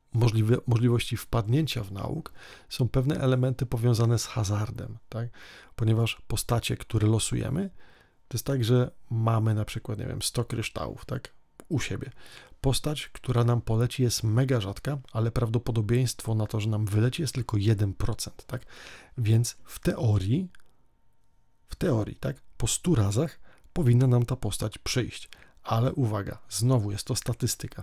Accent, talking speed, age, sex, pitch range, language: native, 145 wpm, 40-59, male, 115-130 Hz, Polish